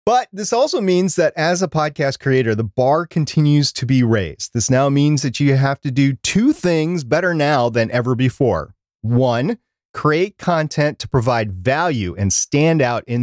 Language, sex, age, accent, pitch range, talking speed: English, male, 30-49, American, 115-175 Hz, 180 wpm